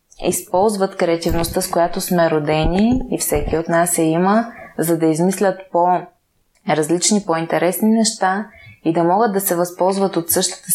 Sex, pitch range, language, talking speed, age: female, 170-195 Hz, Bulgarian, 145 wpm, 20-39